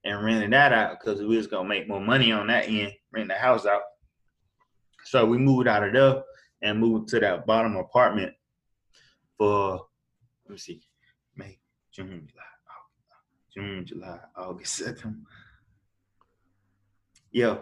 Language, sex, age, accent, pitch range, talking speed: English, male, 20-39, American, 105-130 Hz, 145 wpm